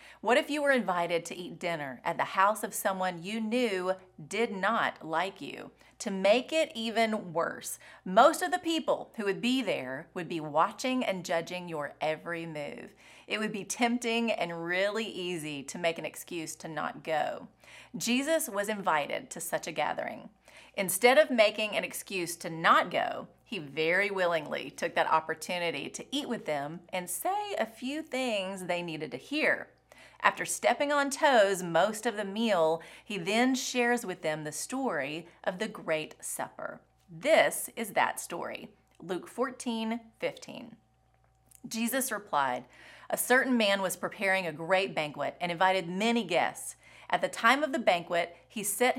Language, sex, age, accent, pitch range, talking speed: English, female, 30-49, American, 175-245 Hz, 165 wpm